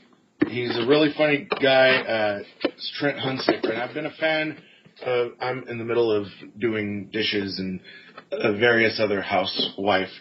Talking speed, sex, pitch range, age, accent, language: 155 wpm, male, 100-120 Hz, 30-49, American, English